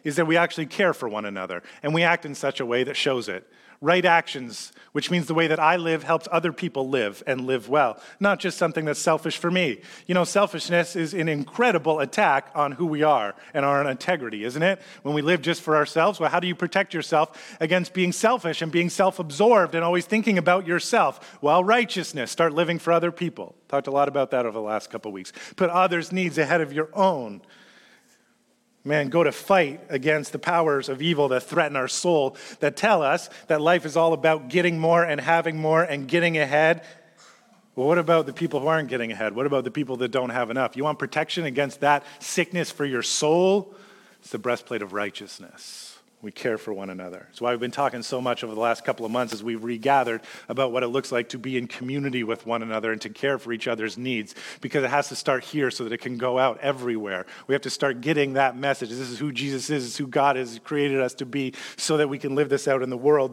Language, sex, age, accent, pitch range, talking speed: English, male, 30-49, American, 130-170 Hz, 235 wpm